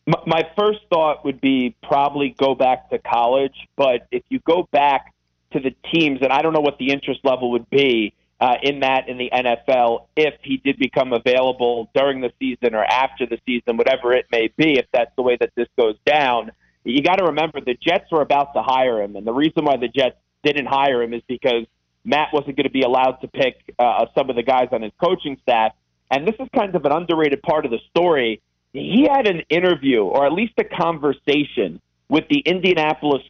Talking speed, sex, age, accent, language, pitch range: 215 wpm, male, 40-59, American, English, 125-160 Hz